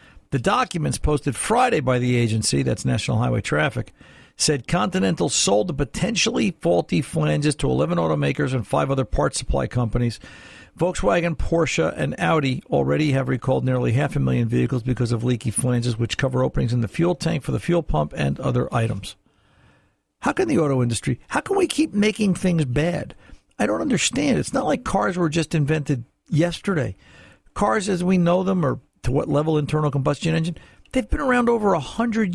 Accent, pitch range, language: American, 120-170 Hz, English